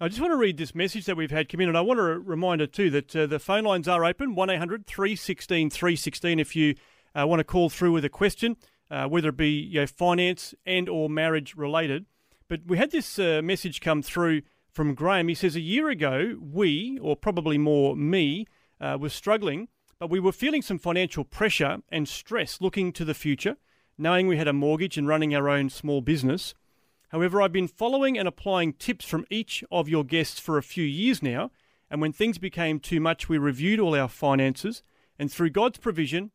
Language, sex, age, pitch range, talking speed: English, male, 30-49, 150-190 Hz, 210 wpm